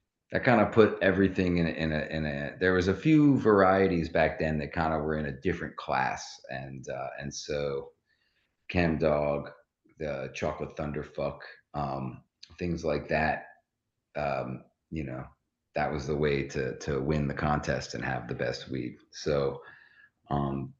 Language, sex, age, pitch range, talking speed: English, male, 40-59, 75-90 Hz, 165 wpm